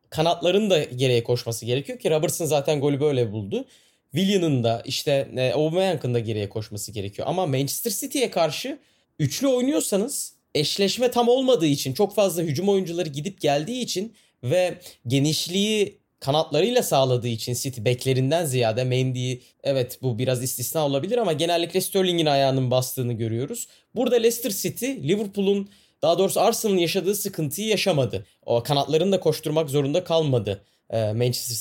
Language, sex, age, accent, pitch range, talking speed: Turkish, male, 30-49, native, 130-190 Hz, 135 wpm